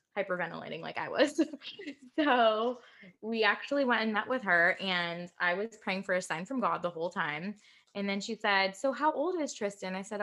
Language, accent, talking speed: English, American, 205 wpm